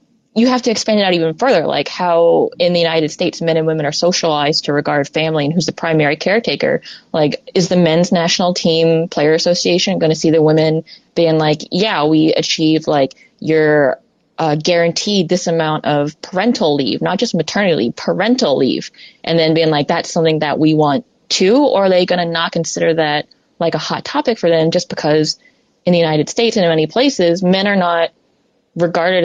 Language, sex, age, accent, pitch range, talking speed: English, female, 20-39, American, 155-185 Hz, 200 wpm